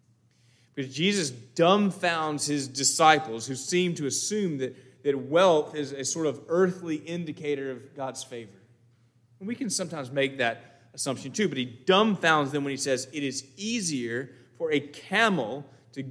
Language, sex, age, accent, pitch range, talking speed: English, male, 30-49, American, 120-160 Hz, 155 wpm